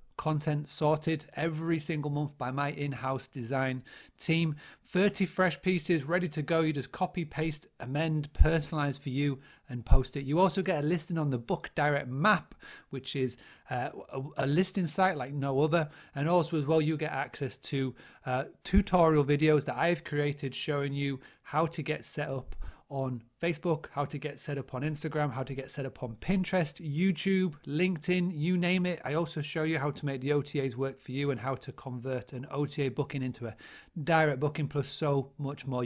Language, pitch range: English, 135-165 Hz